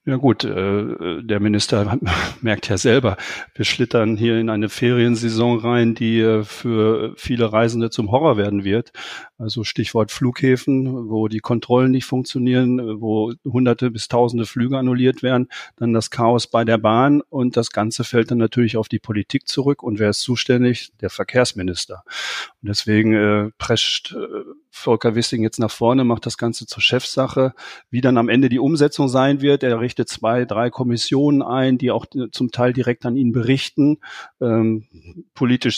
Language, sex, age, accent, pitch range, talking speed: German, male, 40-59, German, 115-130 Hz, 160 wpm